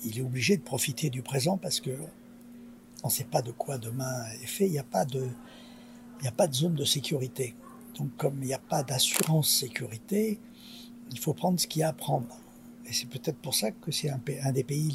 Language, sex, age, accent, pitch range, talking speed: French, male, 60-79, French, 130-200 Hz, 215 wpm